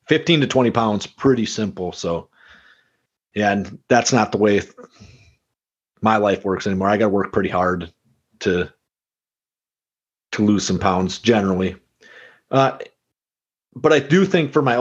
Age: 30-49